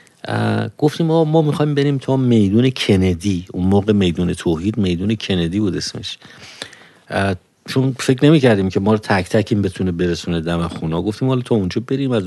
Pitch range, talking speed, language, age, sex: 95-135 Hz, 170 wpm, Persian, 50-69, male